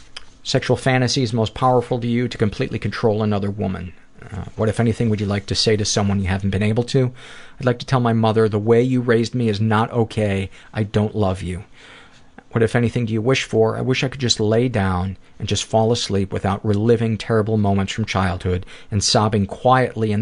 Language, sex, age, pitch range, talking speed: English, male, 40-59, 100-120 Hz, 220 wpm